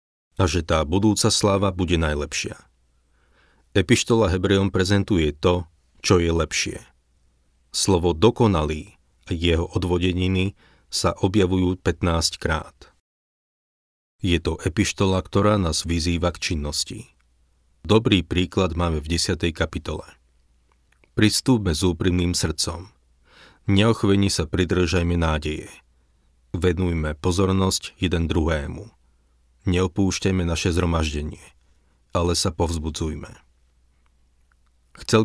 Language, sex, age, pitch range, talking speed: Slovak, male, 40-59, 75-95 Hz, 95 wpm